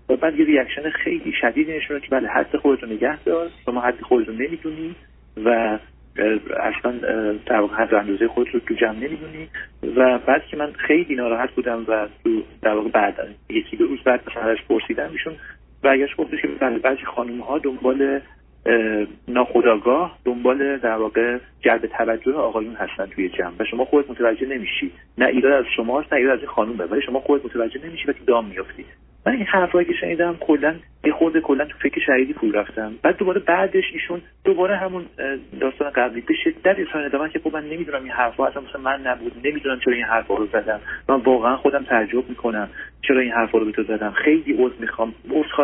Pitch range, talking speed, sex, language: 120-160 Hz, 185 wpm, male, Persian